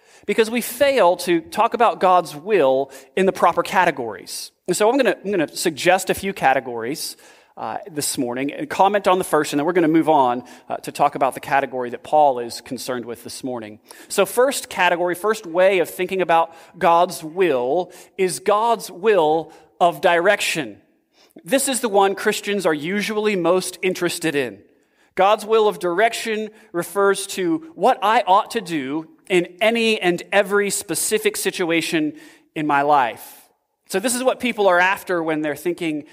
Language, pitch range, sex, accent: English, 160-210 Hz, male, American